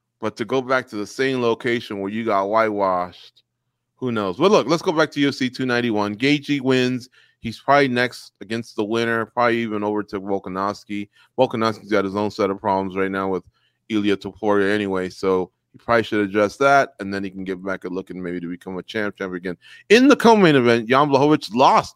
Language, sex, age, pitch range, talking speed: English, male, 30-49, 110-140 Hz, 215 wpm